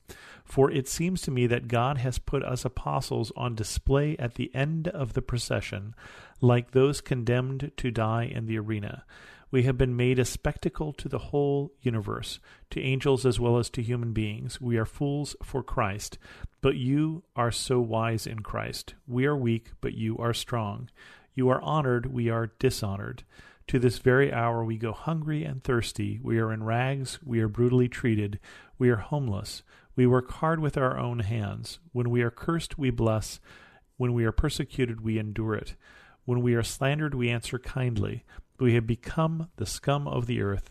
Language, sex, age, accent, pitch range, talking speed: English, male, 40-59, American, 115-135 Hz, 185 wpm